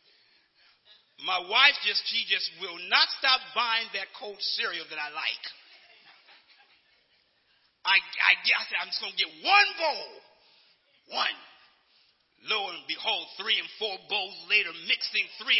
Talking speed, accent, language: 140 wpm, American, English